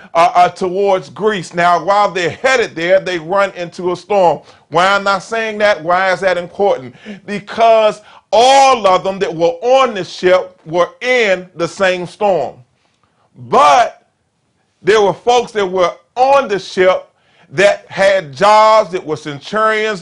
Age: 40-59